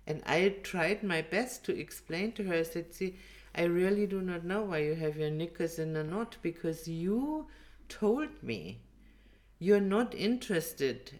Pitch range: 160-220 Hz